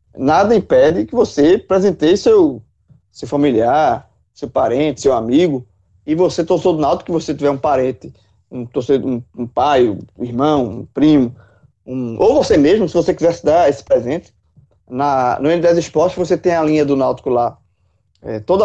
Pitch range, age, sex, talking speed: 120-180 Hz, 20-39, male, 165 wpm